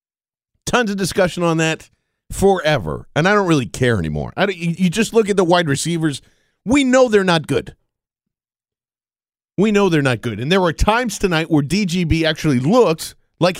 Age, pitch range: 50-69, 130-185 Hz